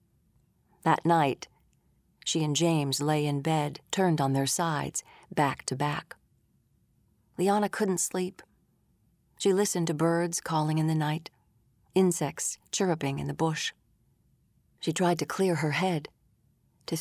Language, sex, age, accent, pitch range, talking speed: English, female, 40-59, American, 145-170 Hz, 135 wpm